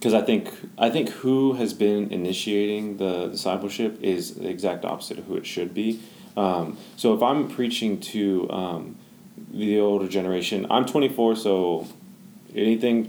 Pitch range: 95-110 Hz